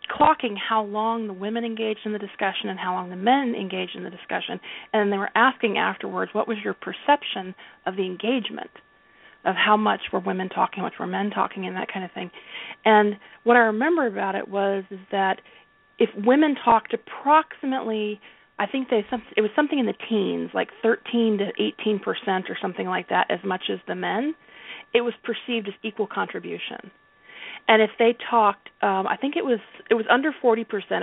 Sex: female